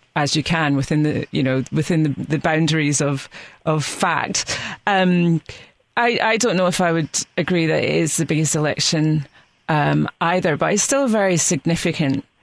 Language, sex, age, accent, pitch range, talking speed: English, female, 30-49, British, 145-165 Hz, 180 wpm